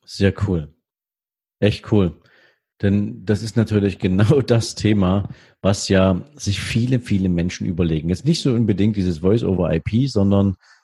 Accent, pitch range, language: German, 95-125 Hz, German